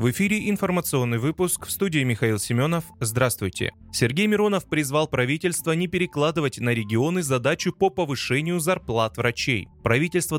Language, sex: Russian, male